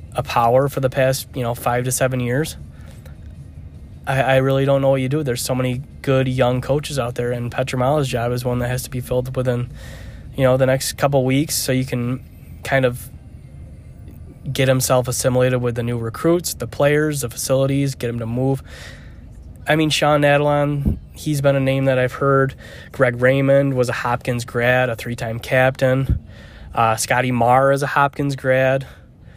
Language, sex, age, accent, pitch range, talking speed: English, male, 20-39, American, 120-135 Hz, 190 wpm